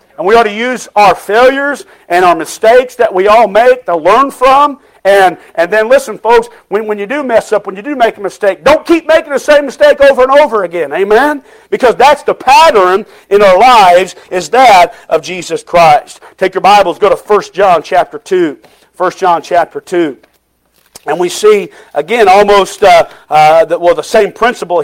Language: English